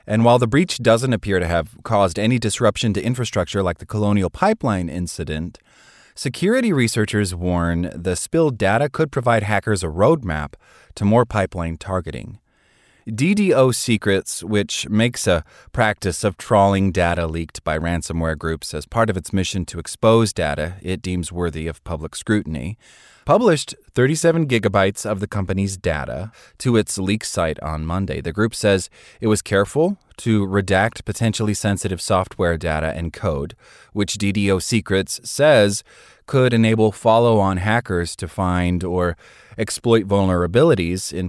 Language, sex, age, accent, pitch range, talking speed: English, male, 30-49, American, 90-110 Hz, 145 wpm